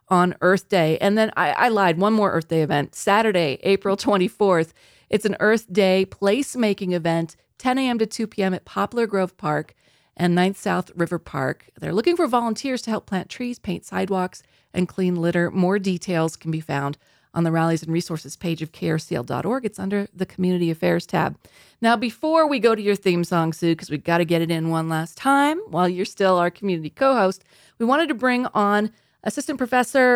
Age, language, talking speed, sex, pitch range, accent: 30-49, English, 200 wpm, female, 180-225 Hz, American